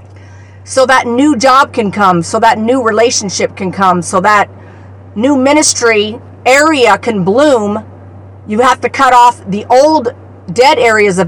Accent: American